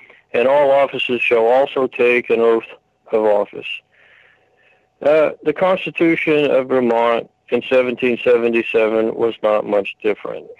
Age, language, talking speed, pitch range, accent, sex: 60-79, English, 120 wpm, 120-155 Hz, American, male